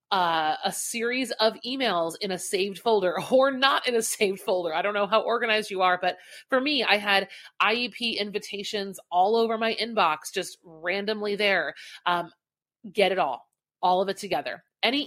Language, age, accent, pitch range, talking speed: English, 30-49, American, 170-220 Hz, 180 wpm